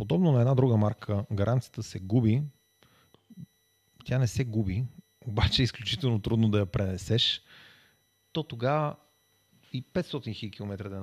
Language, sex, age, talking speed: Bulgarian, male, 40-59, 135 wpm